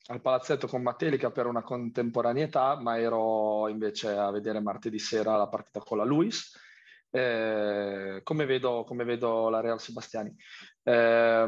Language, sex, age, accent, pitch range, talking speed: Italian, male, 20-39, native, 105-120 Hz, 145 wpm